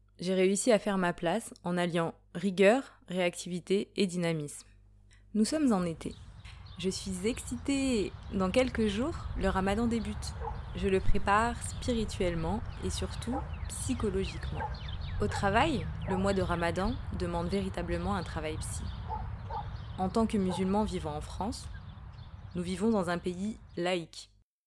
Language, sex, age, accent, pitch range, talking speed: French, female, 20-39, French, 145-210 Hz, 135 wpm